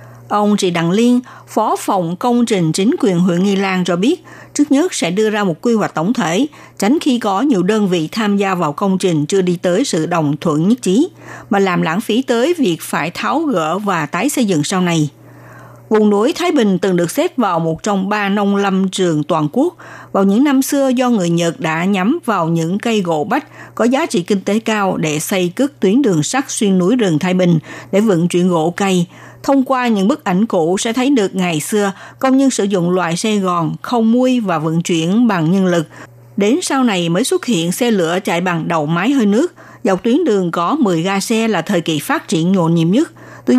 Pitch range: 175-240 Hz